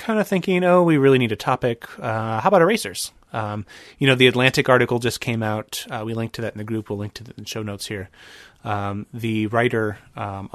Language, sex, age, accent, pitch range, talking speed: English, male, 30-49, American, 105-135 Hz, 235 wpm